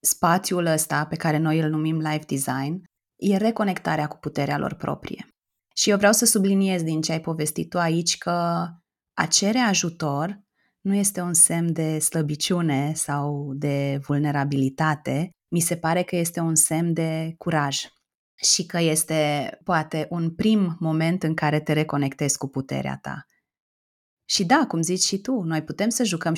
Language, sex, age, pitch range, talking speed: Romanian, female, 20-39, 150-195 Hz, 165 wpm